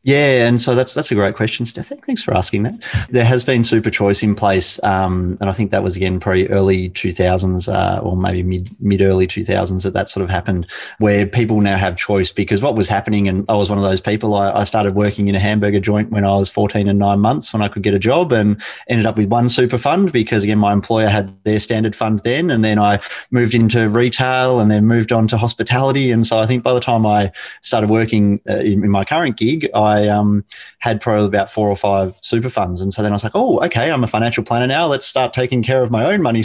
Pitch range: 100-115 Hz